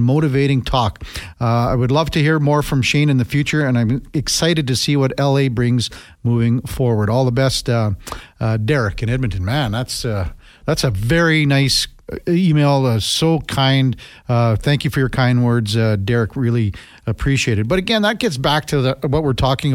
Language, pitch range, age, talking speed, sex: English, 120-160 Hz, 50-69, 195 wpm, male